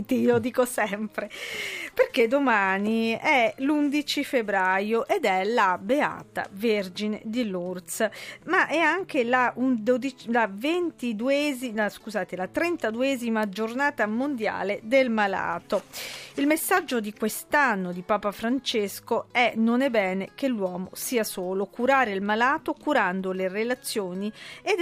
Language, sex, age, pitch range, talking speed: Italian, female, 40-59, 195-265 Hz, 125 wpm